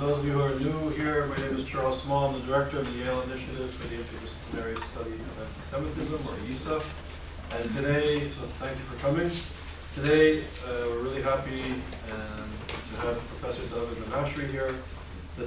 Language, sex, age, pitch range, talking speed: English, male, 40-59, 115-135 Hz, 185 wpm